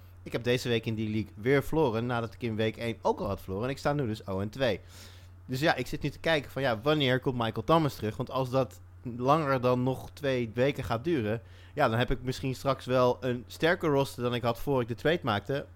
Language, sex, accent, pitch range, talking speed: Dutch, male, Dutch, 110-135 Hz, 250 wpm